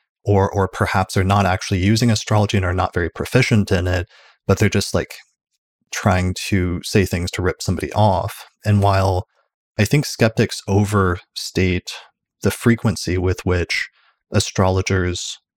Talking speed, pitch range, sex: 145 wpm, 90-100 Hz, male